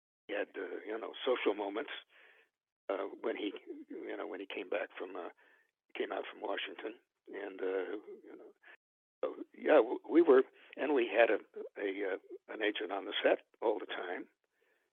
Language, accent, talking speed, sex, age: English, American, 175 wpm, male, 60-79